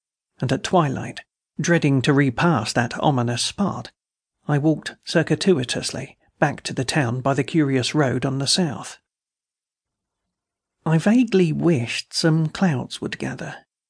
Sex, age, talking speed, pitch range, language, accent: male, 50-69, 130 wpm, 135-170 Hz, English, British